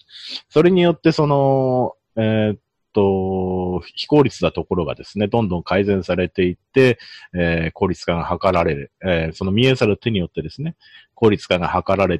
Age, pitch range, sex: 40-59, 85-120 Hz, male